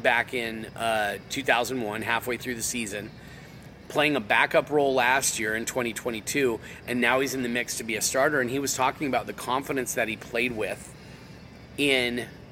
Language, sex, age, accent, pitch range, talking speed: English, male, 30-49, American, 115-140 Hz, 180 wpm